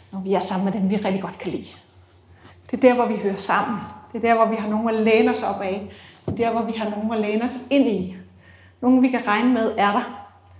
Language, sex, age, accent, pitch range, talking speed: Danish, female, 30-49, native, 185-240 Hz, 285 wpm